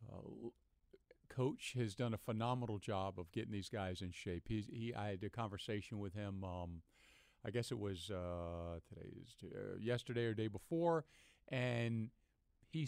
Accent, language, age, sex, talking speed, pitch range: American, English, 50-69, male, 155 wpm, 100-125 Hz